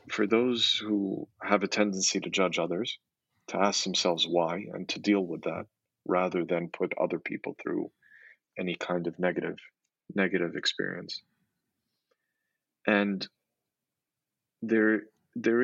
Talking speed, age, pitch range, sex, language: 125 wpm, 40-59, 90-110 Hz, male, English